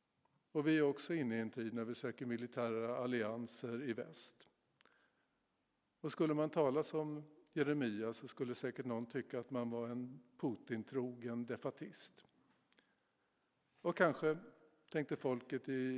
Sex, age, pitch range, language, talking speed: male, 50-69, 120-145 Hz, Swedish, 140 wpm